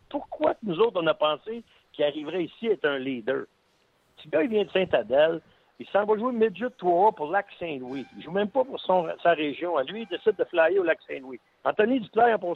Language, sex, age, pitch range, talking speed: French, male, 60-79, 170-250 Hz, 235 wpm